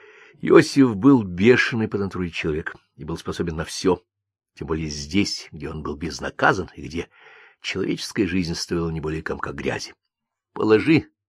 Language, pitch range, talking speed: Russian, 90-135 Hz, 150 wpm